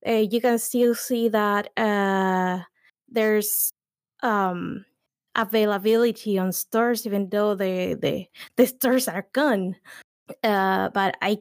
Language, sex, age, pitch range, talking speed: English, female, 20-39, 190-235 Hz, 115 wpm